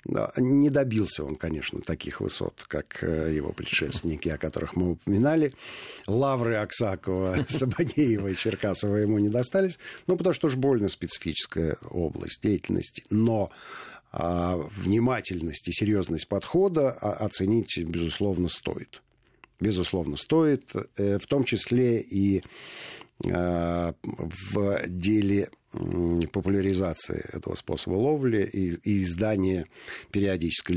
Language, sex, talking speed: Russian, male, 100 wpm